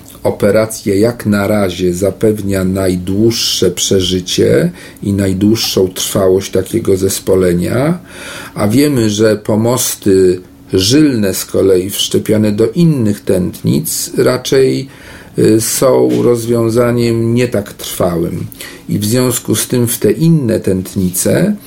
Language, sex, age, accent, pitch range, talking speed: Polish, male, 40-59, native, 95-120 Hz, 105 wpm